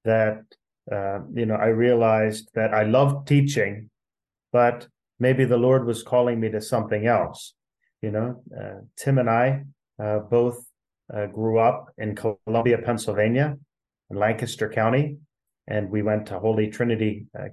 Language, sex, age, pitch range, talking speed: English, male, 30-49, 105-120 Hz, 150 wpm